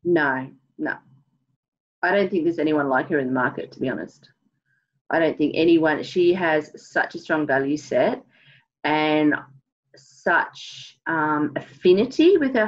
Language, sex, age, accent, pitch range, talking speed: English, female, 30-49, Australian, 145-180 Hz, 150 wpm